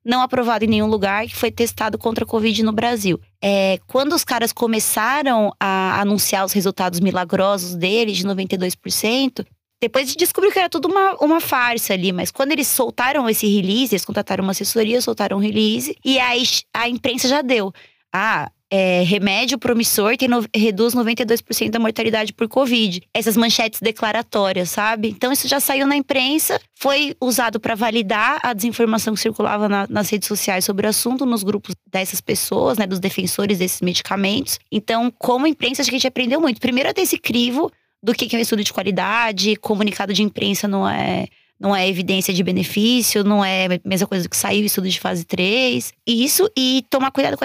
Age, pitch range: 20-39, 205-255 Hz